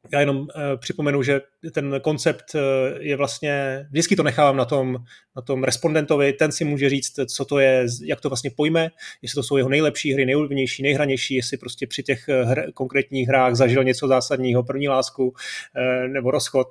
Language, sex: Czech, male